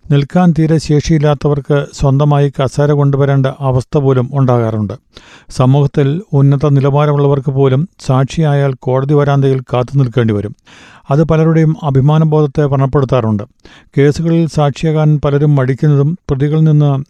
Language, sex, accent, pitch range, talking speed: Malayalam, male, native, 135-150 Hz, 105 wpm